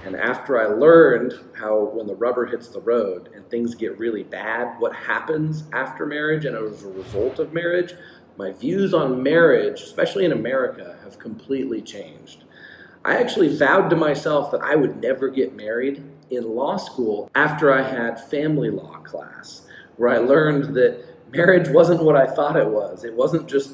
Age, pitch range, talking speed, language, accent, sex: 40-59, 130-170 Hz, 175 wpm, English, American, male